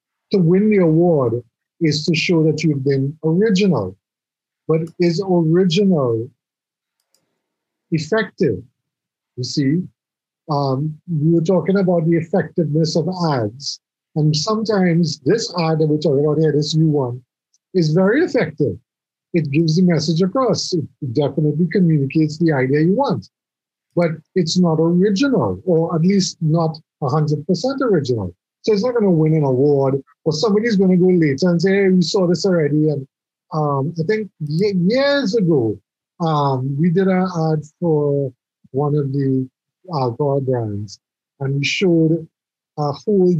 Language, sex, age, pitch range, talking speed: English, male, 50-69, 140-180 Hz, 150 wpm